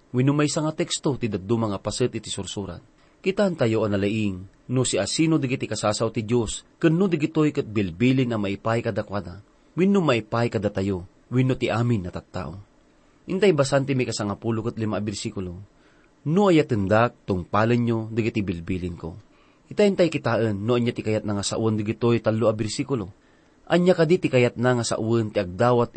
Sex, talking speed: male, 150 wpm